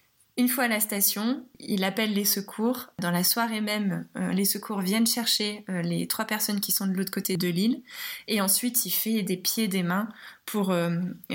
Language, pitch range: French, 190-230 Hz